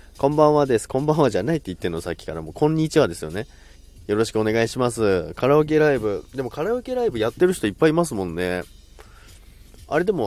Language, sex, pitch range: Japanese, male, 90-135 Hz